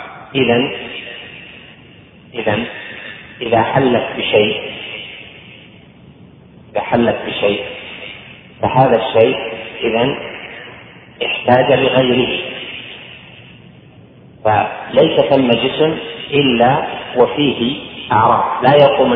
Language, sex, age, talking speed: Arabic, male, 40-59, 65 wpm